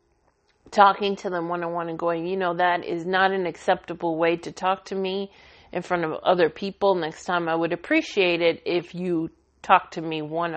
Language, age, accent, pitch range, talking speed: English, 40-59, American, 175-220 Hz, 210 wpm